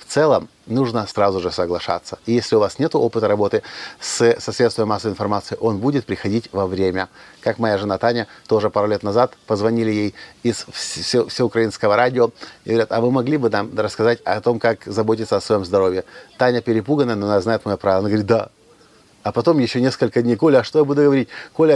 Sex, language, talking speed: male, Russian, 205 wpm